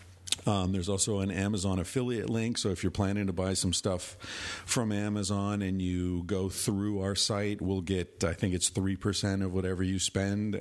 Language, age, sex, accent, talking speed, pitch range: English, 50-69, male, American, 185 wpm, 90-105 Hz